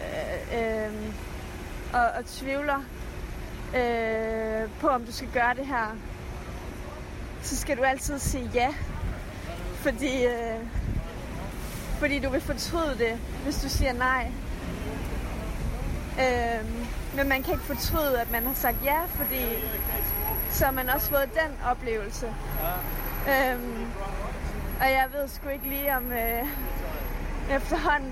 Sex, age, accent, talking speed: female, 30-49, native, 125 wpm